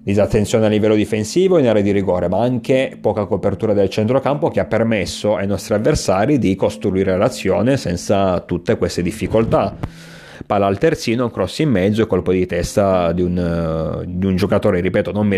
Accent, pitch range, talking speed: native, 95-110 Hz, 175 wpm